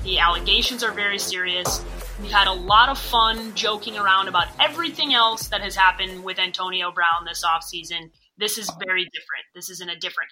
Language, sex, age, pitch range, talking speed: English, female, 20-39, 185-230 Hz, 190 wpm